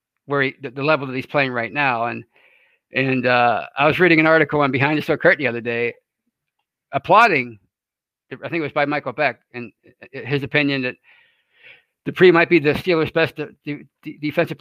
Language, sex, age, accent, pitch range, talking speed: English, male, 50-69, American, 135-160 Hz, 185 wpm